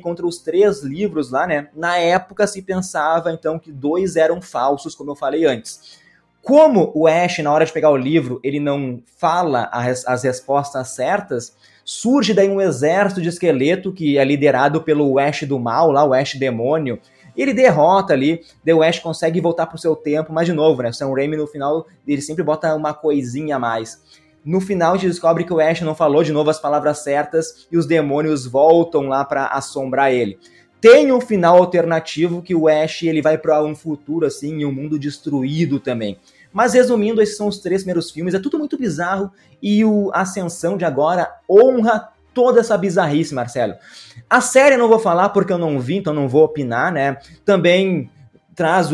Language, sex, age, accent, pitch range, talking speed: Portuguese, male, 20-39, Brazilian, 145-185 Hz, 190 wpm